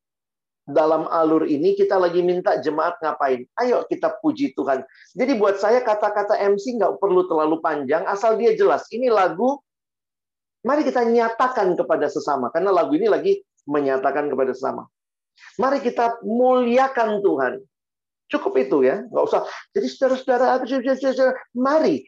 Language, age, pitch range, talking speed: Indonesian, 40-59, 170-250 Hz, 135 wpm